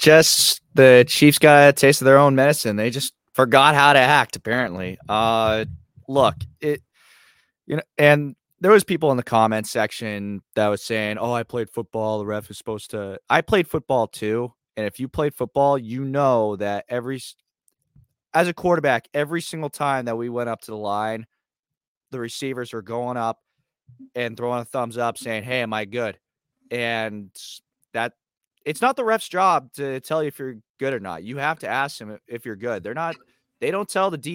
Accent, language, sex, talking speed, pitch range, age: American, English, male, 200 wpm, 115-145 Hz, 20-39